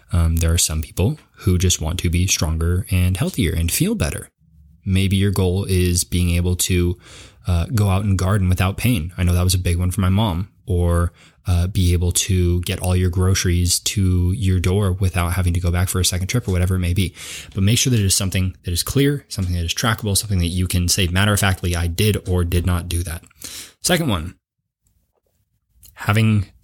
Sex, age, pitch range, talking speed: male, 20-39, 90-105 Hz, 220 wpm